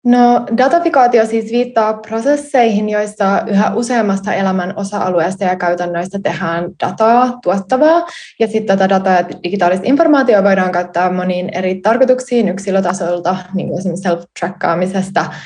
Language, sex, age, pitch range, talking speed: Finnish, female, 20-39, 180-225 Hz, 115 wpm